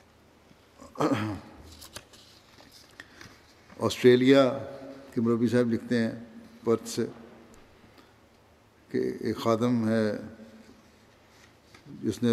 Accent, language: Indian, English